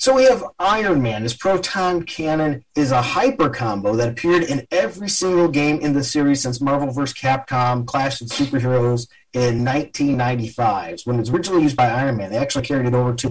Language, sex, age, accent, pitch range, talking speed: English, male, 30-49, American, 120-155 Hz, 200 wpm